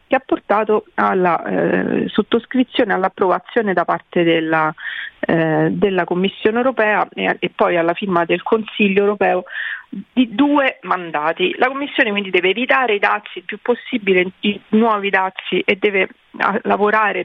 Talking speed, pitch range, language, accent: 145 wpm, 180-220 Hz, Italian, native